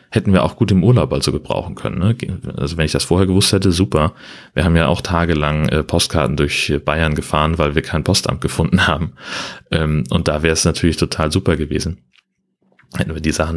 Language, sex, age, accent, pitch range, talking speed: German, male, 30-49, German, 75-85 Hz, 205 wpm